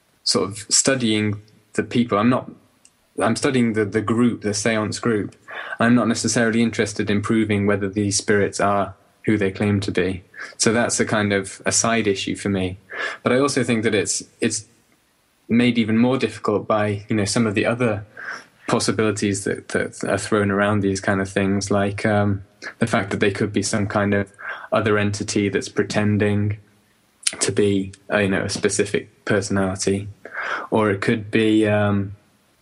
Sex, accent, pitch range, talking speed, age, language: male, British, 100-115 Hz, 175 wpm, 20-39, English